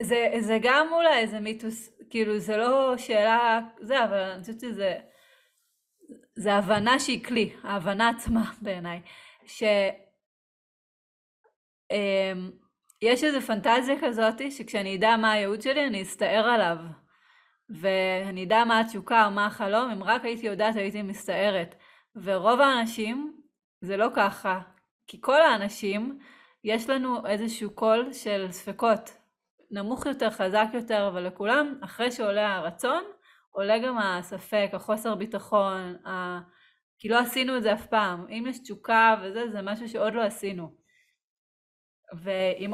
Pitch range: 195-240 Hz